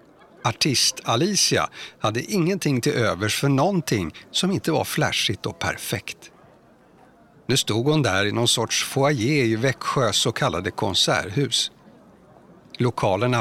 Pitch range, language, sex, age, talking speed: 110-145 Hz, Swedish, male, 60-79, 125 wpm